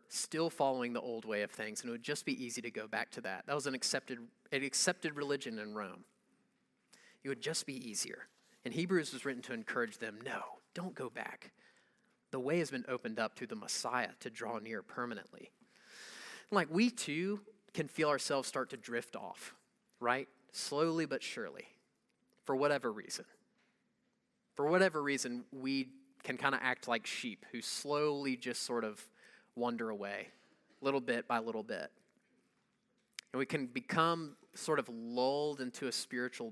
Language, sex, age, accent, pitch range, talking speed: English, male, 30-49, American, 125-165 Hz, 175 wpm